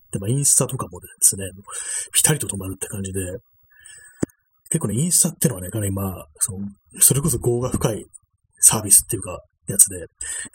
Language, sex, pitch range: Japanese, male, 100-140 Hz